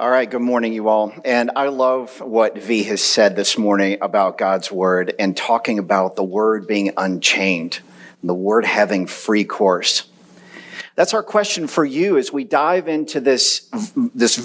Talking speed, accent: 170 wpm, American